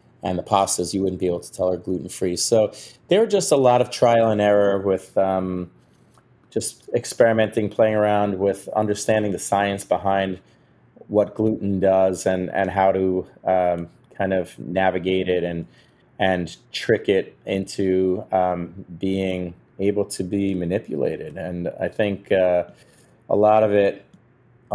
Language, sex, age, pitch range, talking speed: English, male, 30-49, 90-105 Hz, 155 wpm